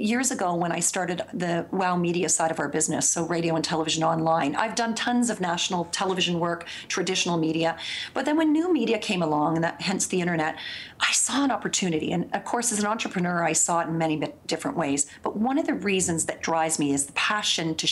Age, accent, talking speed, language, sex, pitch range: 40-59, American, 220 wpm, English, female, 165-215 Hz